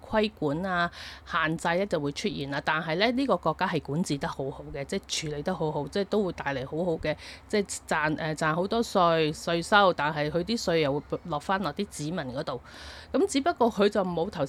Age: 30-49